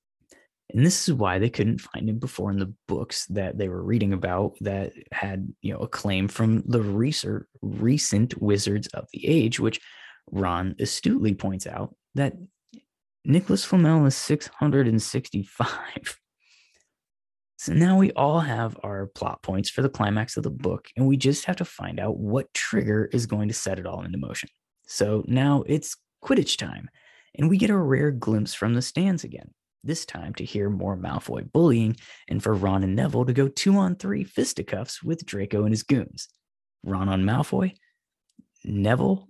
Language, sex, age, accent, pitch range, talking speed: English, male, 20-39, American, 100-145 Hz, 170 wpm